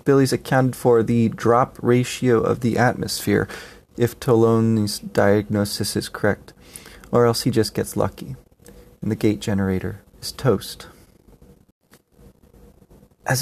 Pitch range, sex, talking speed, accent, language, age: 105-135 Hz, male, 120 wpm, American, English, 30-49